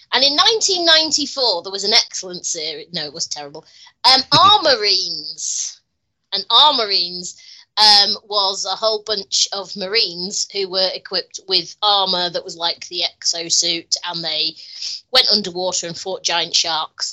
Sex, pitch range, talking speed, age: female, 170-285 Hz, 150 wpm, 30-49